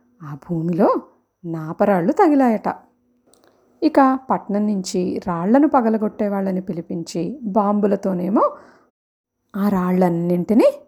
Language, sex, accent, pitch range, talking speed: Telugu, female, native, 185-255 Hz, 70 wpm